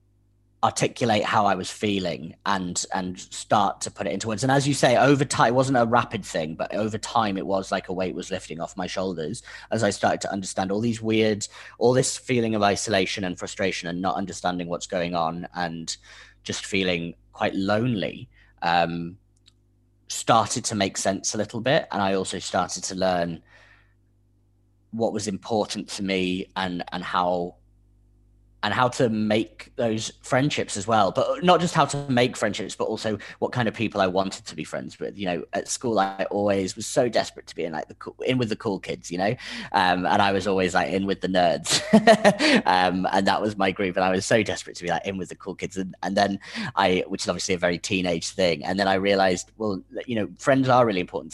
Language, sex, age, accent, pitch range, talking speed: English, male, 30-49, British, 95-110 Hz, 215 wpm